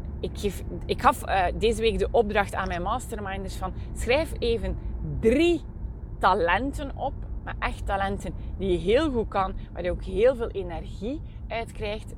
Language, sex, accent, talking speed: Dutch, female, Belgian, 150 wpm